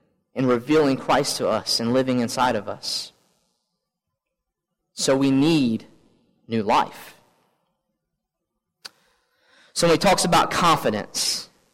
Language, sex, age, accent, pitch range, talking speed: English, male, 30-49, American, 120-165 Hz, 105 wpm